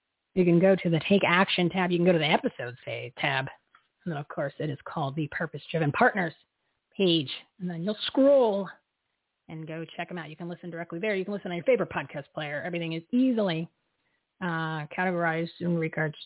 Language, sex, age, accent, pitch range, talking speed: English, female, 30-49, American, 165-210 Hz, 205 wpm